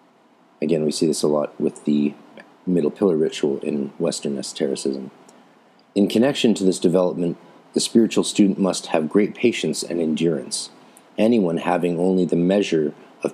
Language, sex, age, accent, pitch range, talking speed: English, male, 40-59, American, 80-105 Hz, 155 wpm